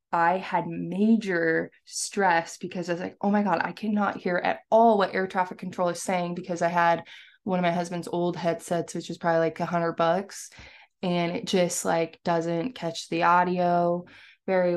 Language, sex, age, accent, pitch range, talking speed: English, female, 20-39, American, 165-185 Hz, 190 wpm